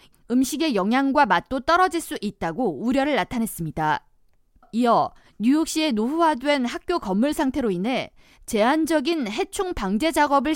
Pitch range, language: 220-315 Hz, Korean